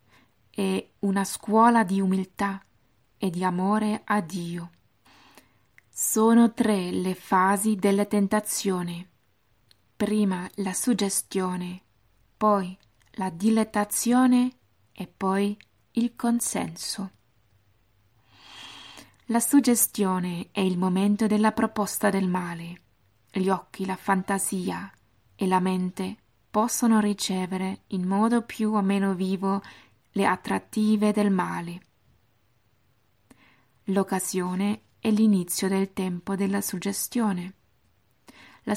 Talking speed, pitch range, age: 95 wpm, 180-210 Hz, 20-39